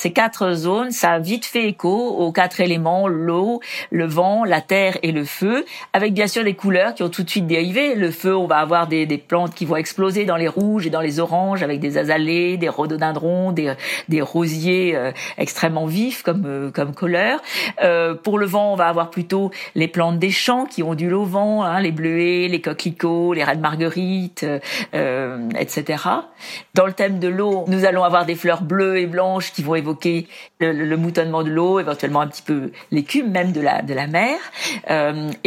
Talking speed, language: 210 wpm, French